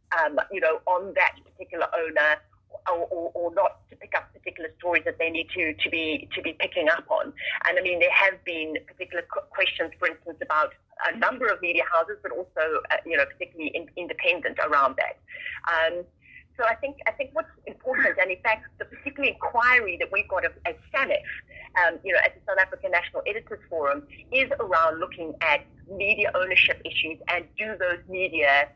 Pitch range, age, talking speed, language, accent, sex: 165-265 Hz, 30-49, 195 wpm, English, British, female